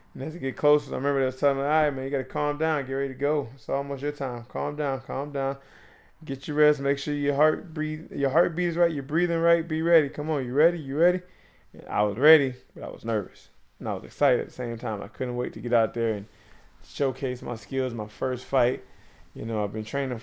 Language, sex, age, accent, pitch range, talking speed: English, male, 20-39, American, 115-140 Hz, 250 wpm